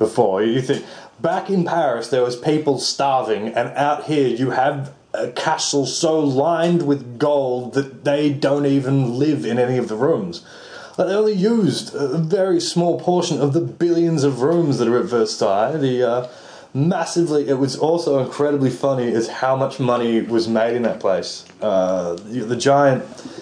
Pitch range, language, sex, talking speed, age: 115-145 Hz, English, male, 175 wpm, 20-39